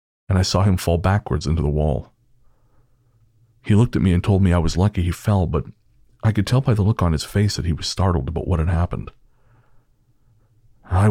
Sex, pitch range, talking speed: male, 85-105 Hz, 215 wpm